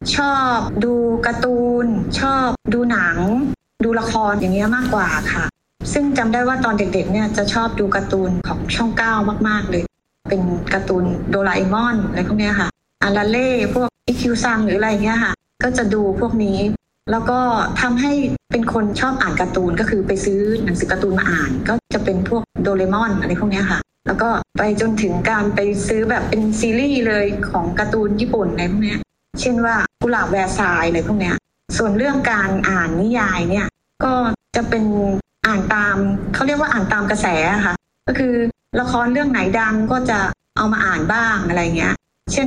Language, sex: Thai, female